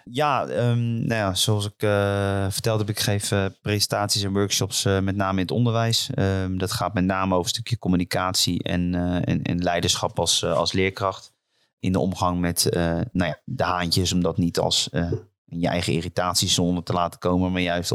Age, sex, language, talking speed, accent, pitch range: 30-49, male, Dutch, 180 wpm, Dutch, 90-100 Hz